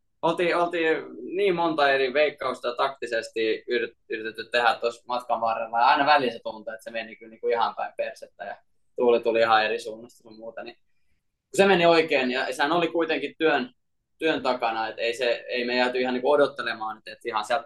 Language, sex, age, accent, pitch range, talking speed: Finnish, male, 20-39, native, 115-145 Hz, 195 wpm